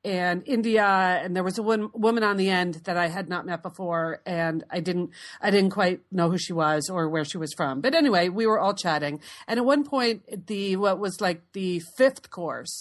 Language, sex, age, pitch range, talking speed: English, female, 40-59, 170-220 Hz, 235 wpm